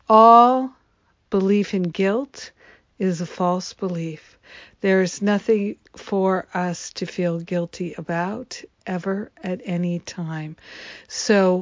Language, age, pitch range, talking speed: English, 60-79, 175-205 Hz, 115 wpm